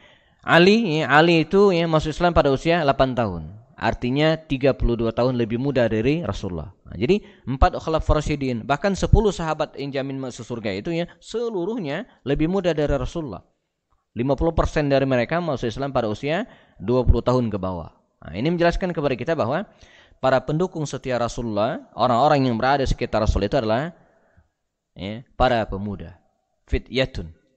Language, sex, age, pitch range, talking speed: Indonesian, male, 20-39, 110-150 Hz, 155 wpm